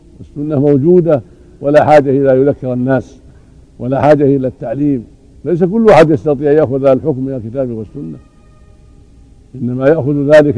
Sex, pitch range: male, 125-150 Hz